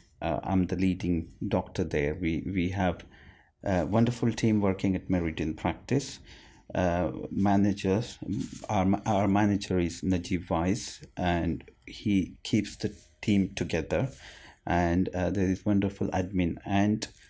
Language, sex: English, male